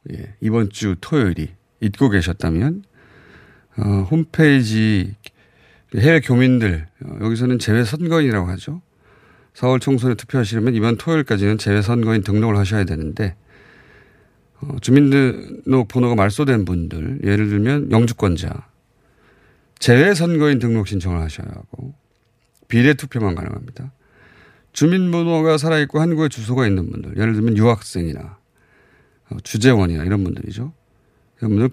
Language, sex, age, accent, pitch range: Korean, male, 40-59, native, 100-135 Hz